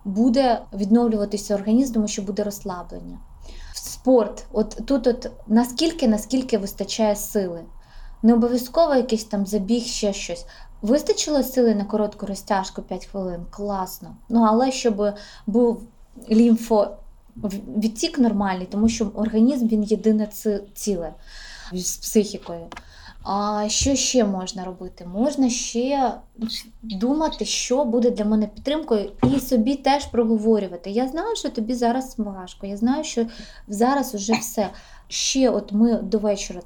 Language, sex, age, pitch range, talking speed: Ukrainian, female, 20-39, 200-245 Hz, 130 wpm